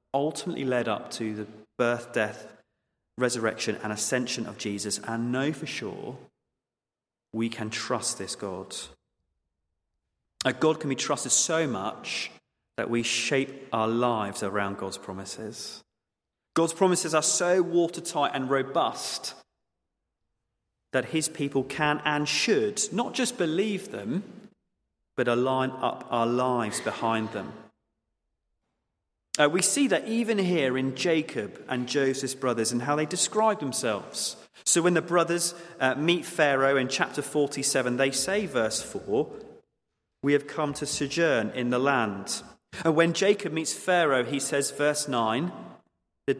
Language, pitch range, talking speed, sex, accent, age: English, 115-155 Hz, 140 wpm, male, British, 30-49